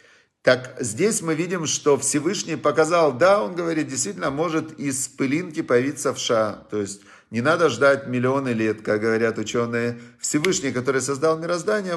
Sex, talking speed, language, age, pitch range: male, 150 wpm, Russian, 40-59, 130-155 Hz